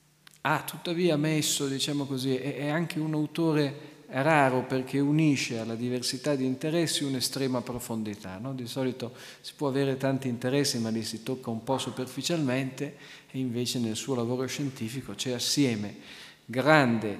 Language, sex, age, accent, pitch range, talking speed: Italian, male, 50-69, native, 115-145 Hz, 145 wpm